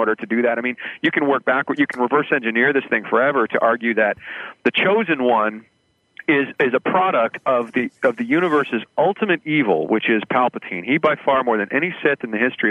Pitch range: 115-145 Hz